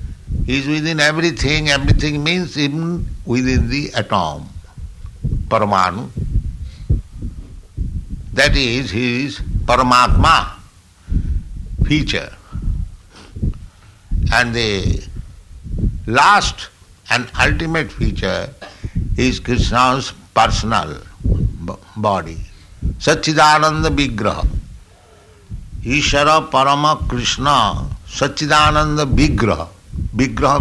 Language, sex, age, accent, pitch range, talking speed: English, male, 60-79, Indian, 90-135 Hz, 65 wpm